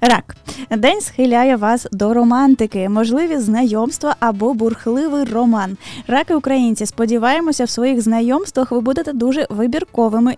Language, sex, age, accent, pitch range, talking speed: Ukrainian, female, 10-29, native, 225-270 Hz, 115 wpm